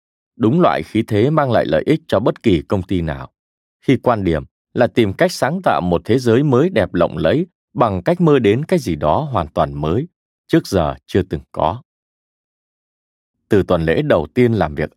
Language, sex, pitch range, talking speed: Vietnamese, male, 85-125 Hz, 205 wpm